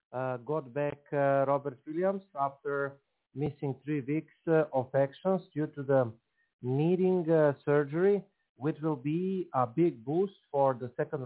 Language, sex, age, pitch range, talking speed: English, male, 40-59, 135-160 Hz, 150 wpm